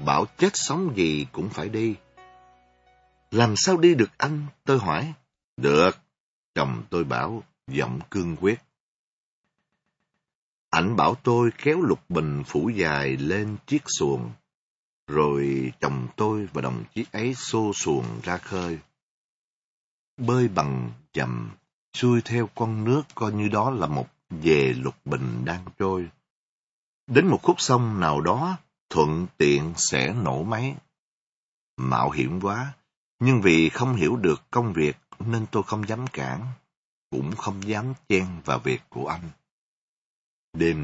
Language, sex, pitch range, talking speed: Vietnamese, male, 75-120 Hz, 140 wpm